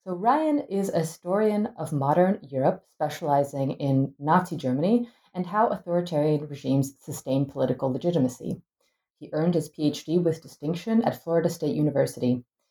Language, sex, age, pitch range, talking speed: English, female, 30-49, 140-190 Hz, 135 wpm